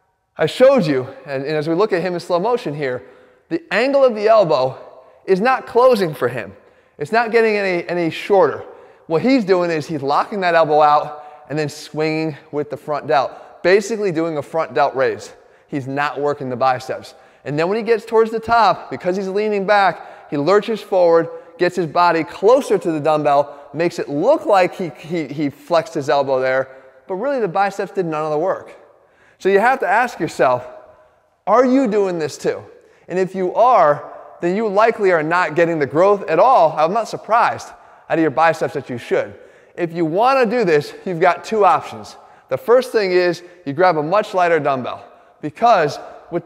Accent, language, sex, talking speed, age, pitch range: American, English, male, 200 wpm, 20-39, 155-235 Hz